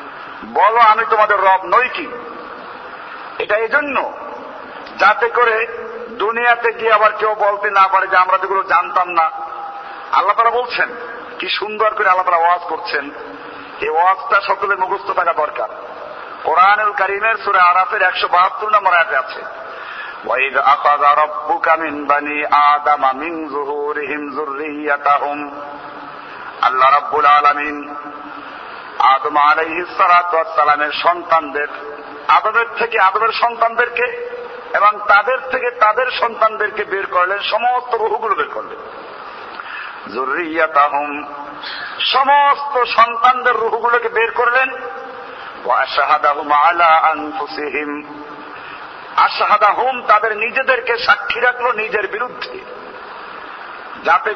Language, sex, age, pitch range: Bengali, male, 50-69, 150-235 Hz